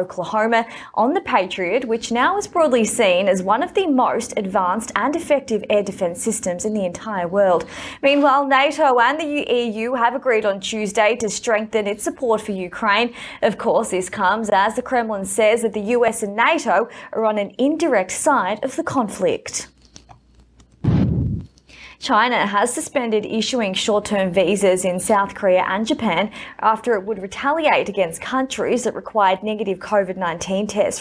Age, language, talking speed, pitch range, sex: 20-39, English, 165 wpm, 195-250 Hz, female